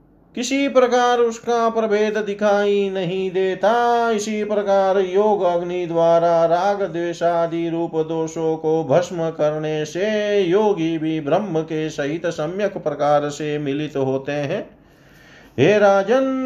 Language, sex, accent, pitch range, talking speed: Hindi, male, native, 150-200 Hz, 120 wpm